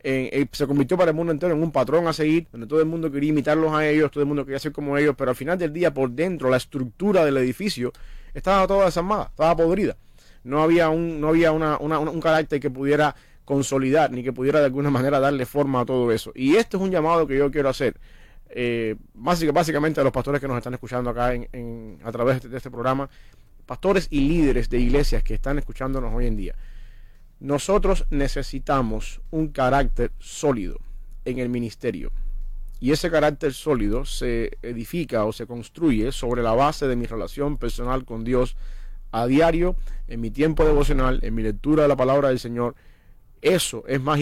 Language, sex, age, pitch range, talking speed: English, male, 30-49, 120-150 Hz, 205 wpm